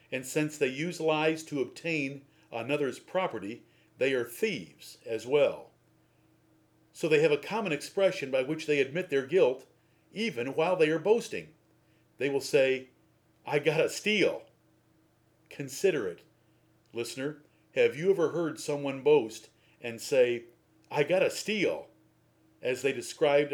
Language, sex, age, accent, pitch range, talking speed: English, male, 50-69, American, 135-195 Hz, 145 wpm